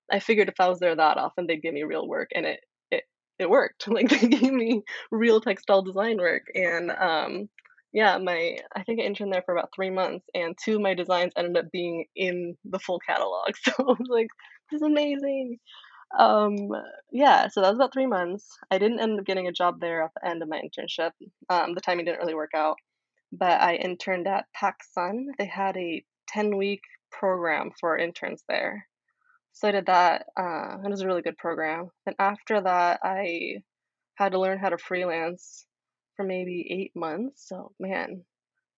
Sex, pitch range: female, 175-225 Hz